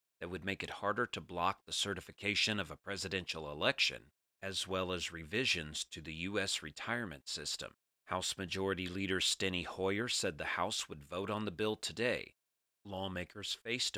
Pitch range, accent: 85-110 Hz, American